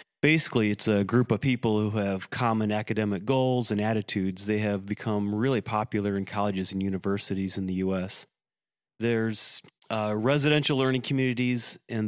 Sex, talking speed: male, 155 wpm